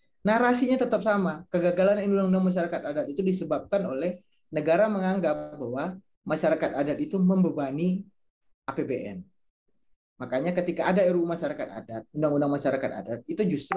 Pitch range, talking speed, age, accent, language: 140-185 Hz, 125 wpm, 20-39, native, Indonesian